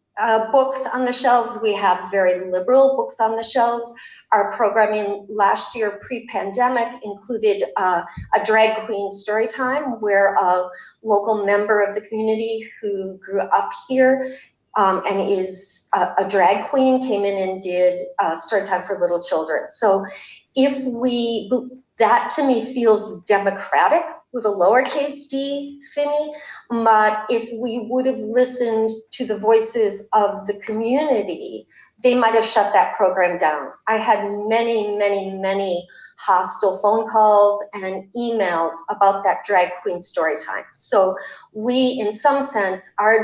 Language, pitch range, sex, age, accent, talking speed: English, 195-245 Hz, female, 50-69, American, 145 wpm